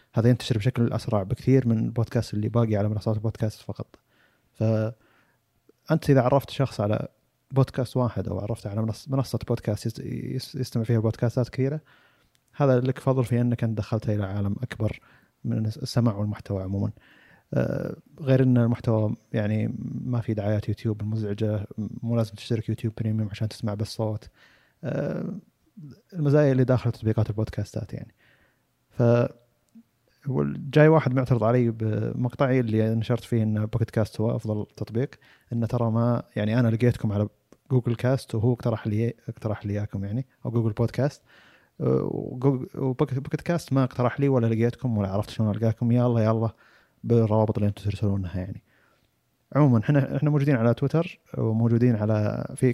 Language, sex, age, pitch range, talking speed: Arabic, male, 30-49, 110-130 Hz, 150 wpm